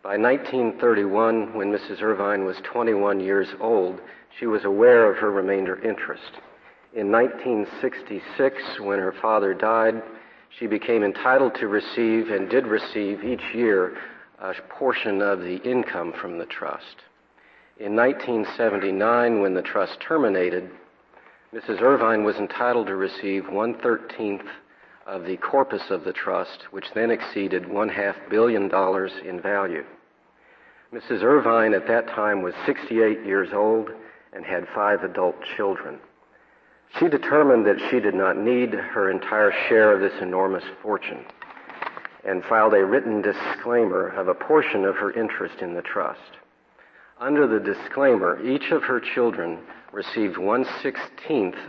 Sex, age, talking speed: male, 50-69, 140 wpm